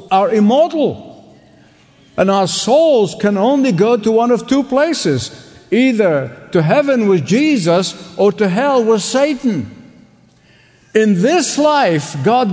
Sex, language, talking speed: male, English, 130 wpm